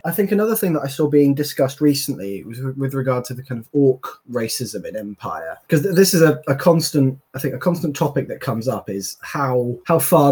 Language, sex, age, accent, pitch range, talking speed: English, male, 20-39, British, 140-200 Hz, 225 wpm